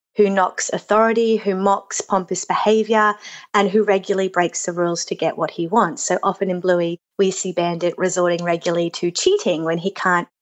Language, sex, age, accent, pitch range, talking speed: English, female, 30-49, Australian, 175-210 Hz, 185 wpm